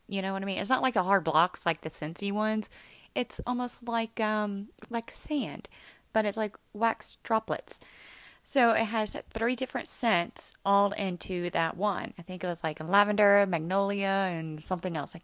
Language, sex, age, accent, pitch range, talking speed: English, female, 20-39, American, 175-225 Hz, 185 wpm